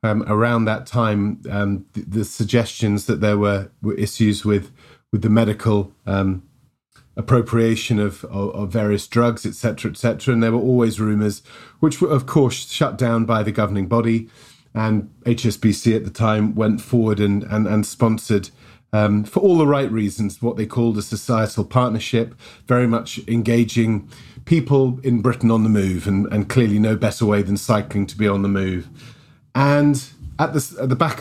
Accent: British